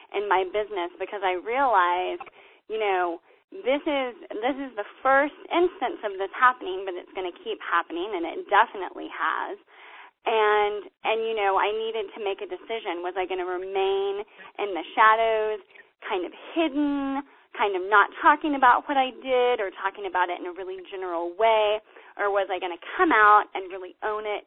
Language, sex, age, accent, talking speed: English, female, 10-29, American, 190 wpm